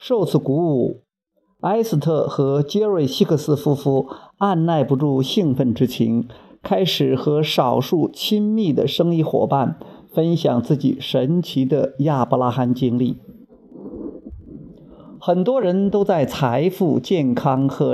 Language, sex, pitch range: Chinese, male, 135-190 Hz